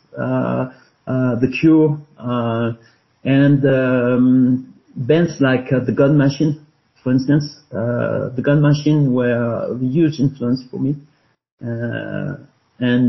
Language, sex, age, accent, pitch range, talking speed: English, male, 50-69, French, 120-145 Hz, 125 wpm